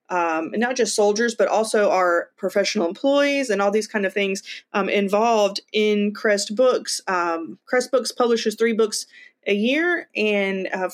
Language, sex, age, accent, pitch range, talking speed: English, female, 30-49, American, 185-230 Hz, 170 wpm